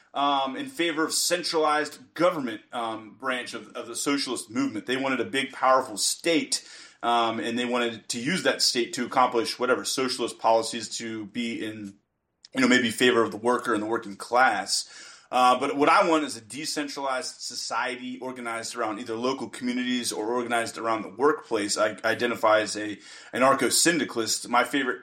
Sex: male